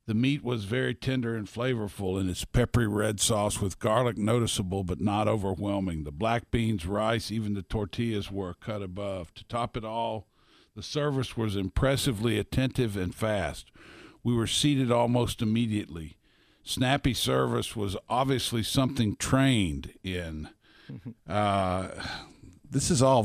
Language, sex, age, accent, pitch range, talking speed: English, male, 50-69, American, 105-125 Hz, 140 wpm